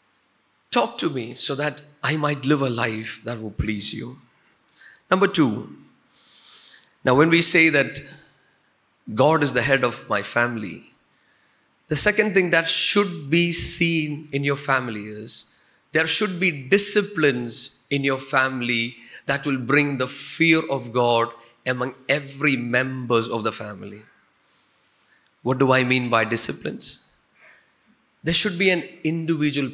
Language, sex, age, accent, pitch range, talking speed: Malayalam, male, 30-49, native, 120-165 Hz, 145 wpm